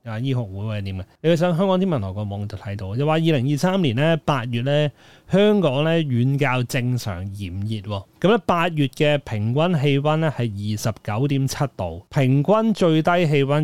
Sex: male